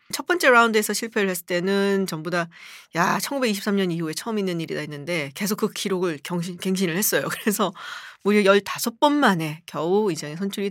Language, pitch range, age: Korean, 175-235 Hz, 40-59